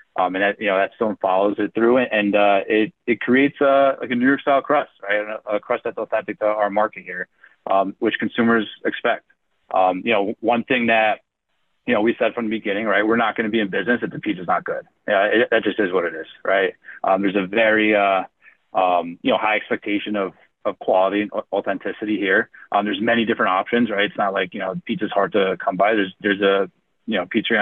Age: 30-49